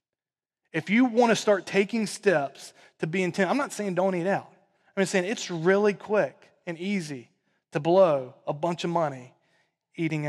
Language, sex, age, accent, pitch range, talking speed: English, male, 30-49, American, 170-255 Hz, 175 wpm